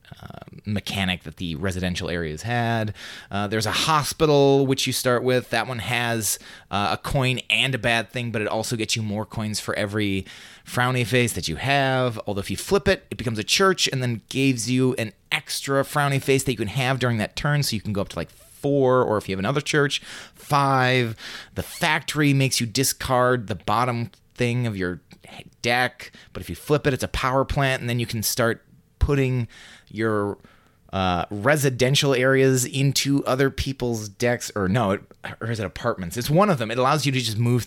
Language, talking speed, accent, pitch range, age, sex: English, 205 wpm, American, 110-140 Hz, 30-49, male